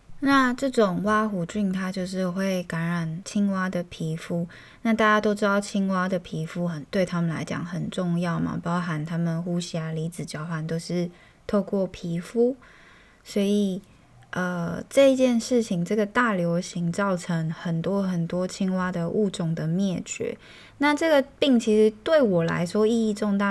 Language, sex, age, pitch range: Chinese, female, 20-39, 175-210 Hz